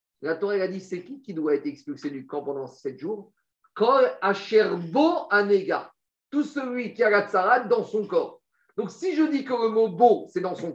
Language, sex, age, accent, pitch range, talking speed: French, male, 50-69, French, 175-290 Hz, 195 wpm